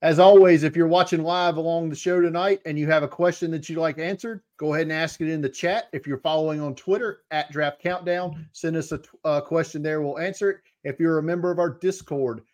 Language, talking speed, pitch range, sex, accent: English, 240 wpm, 140-175 Hz, male, American